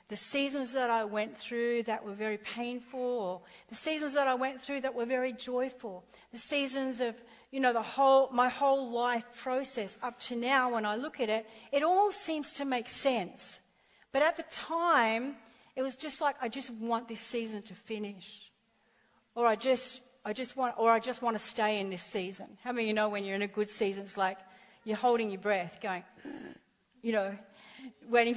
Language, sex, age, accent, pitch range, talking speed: English, female, 40-59, Australian, 215-265 Hz, 205 wpm